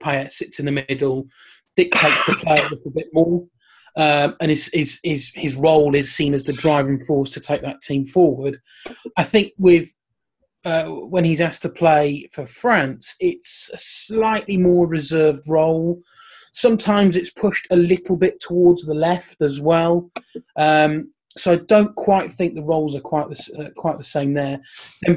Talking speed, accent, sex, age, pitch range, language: 180 wpm, British, male, 30-49, 140-180 Hz, English